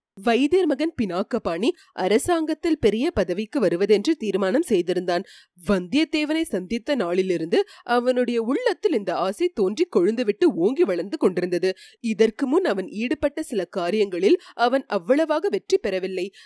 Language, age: Tamil, 30-49